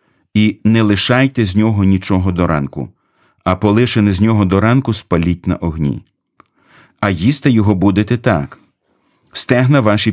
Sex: male